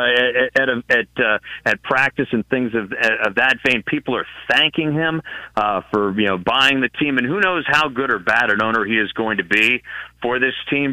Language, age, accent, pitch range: English, 40-59, American, 110-125 Hz